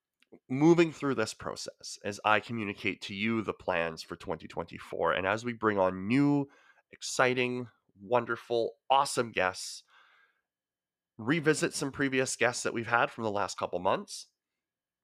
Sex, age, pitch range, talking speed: male, 20-39, 95-120 Hz, 140 wpm